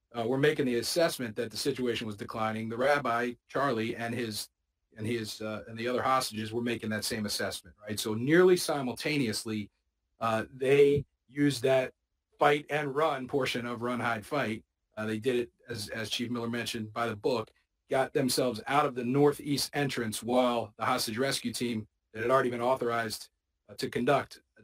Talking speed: 185 wpm